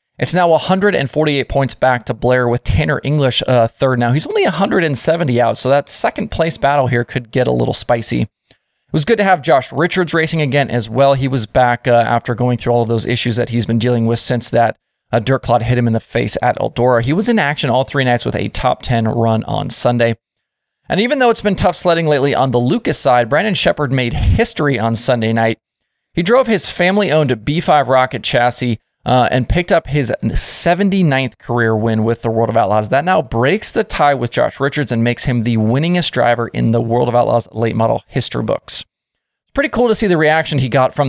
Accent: American